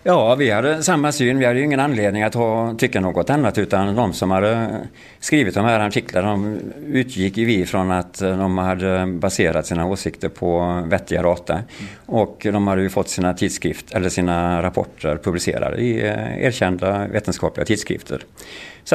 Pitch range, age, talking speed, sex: 90-110 Hz, 50-69, 170 wpm, male